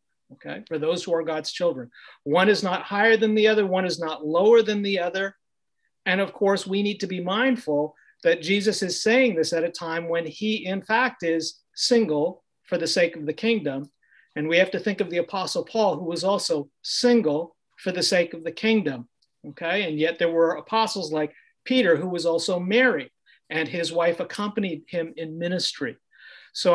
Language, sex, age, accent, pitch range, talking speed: English, male, 50-69, American, 165-210 Hz, 195 wpm